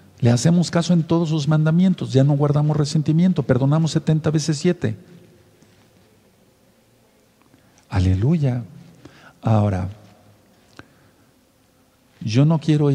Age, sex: 50-69, male